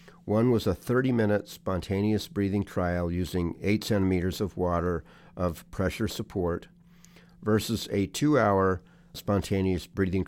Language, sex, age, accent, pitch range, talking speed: English, male, 50-69, American, 90-120 Hz, 115 wpm